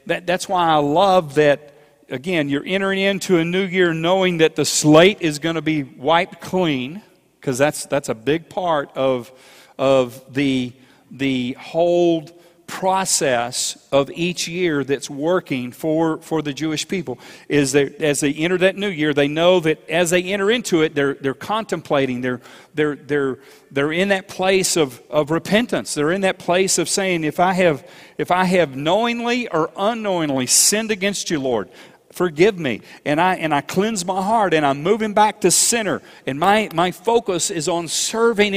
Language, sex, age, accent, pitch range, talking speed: English, male, 40-59, American, 150-195 Hz, 180 wpm